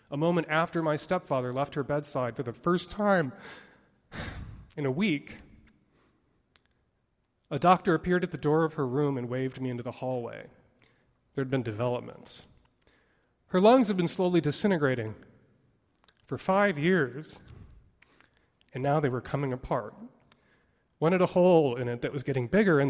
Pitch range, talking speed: 125-170 Hz, 155 wpm